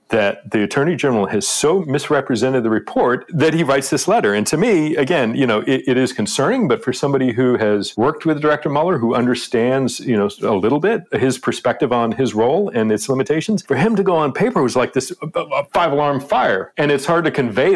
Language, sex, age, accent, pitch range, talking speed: English, male, 40-59, American, 105-140 Hz, 220 wpm